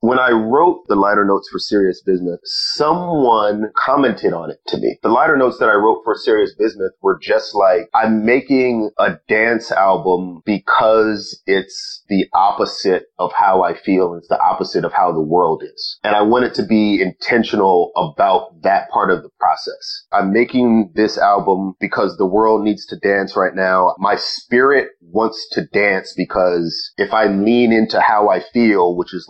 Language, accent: English, American